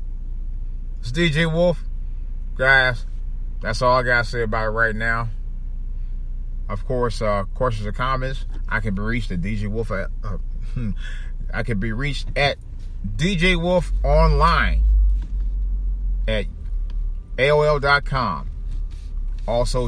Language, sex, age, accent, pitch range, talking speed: English, male, 30-49, American, 75-125 Hz, 120 wpm